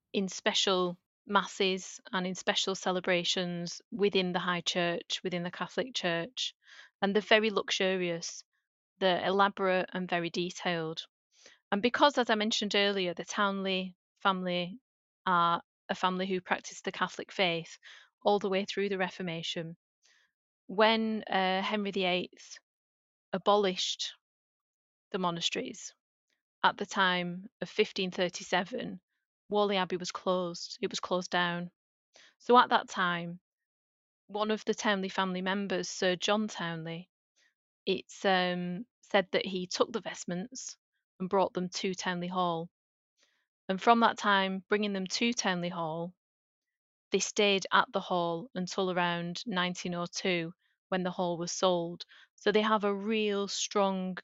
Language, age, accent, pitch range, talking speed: English, 30-49, British, 180-205 Hz, 135 wpm